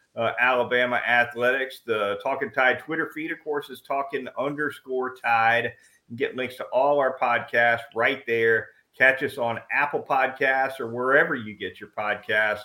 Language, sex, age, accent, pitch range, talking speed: English, male, 40-59, American, 115-145 Hz, 165 wpm